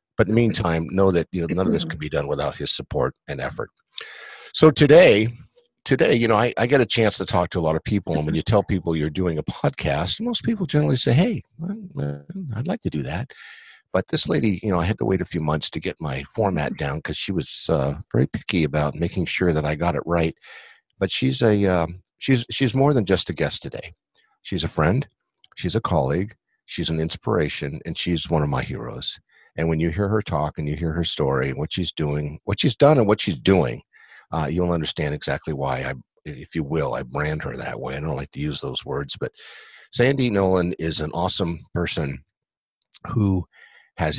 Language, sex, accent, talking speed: English, male, American, 225 wpm